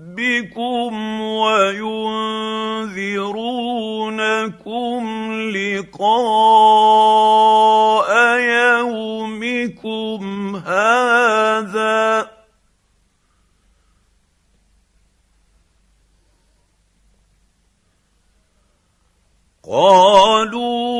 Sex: male